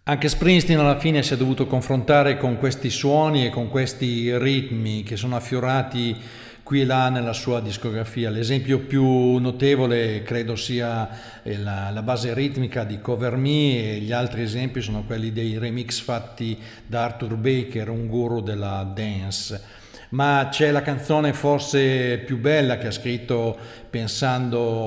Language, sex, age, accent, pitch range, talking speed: Italian, male, 50-69, native, 110-130 Hz, 150 wpm